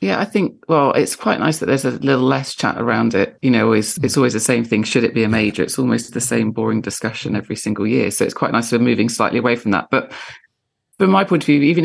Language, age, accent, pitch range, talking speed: English, 30-49, British, 115-135 Hz, 280 wpm